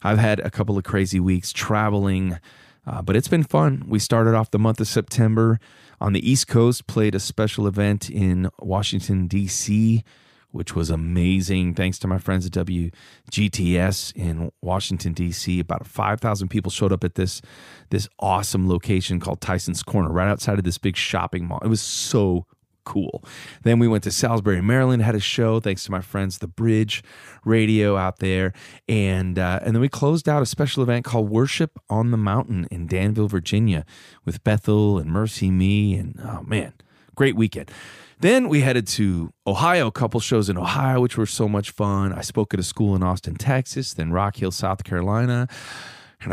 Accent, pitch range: American, 95-115 Hz